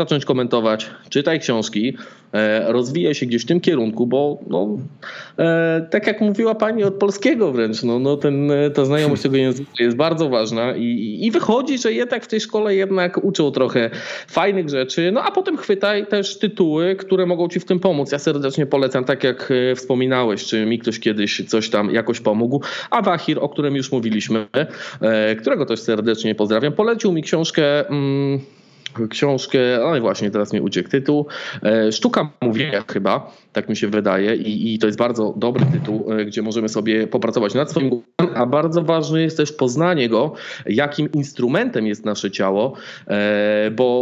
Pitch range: 115-165 Hz